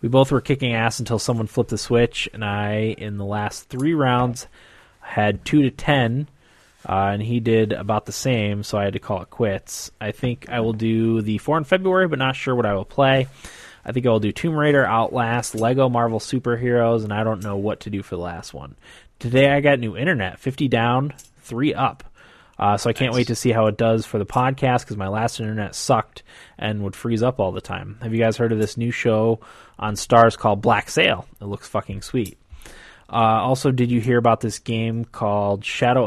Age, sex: 20-39, male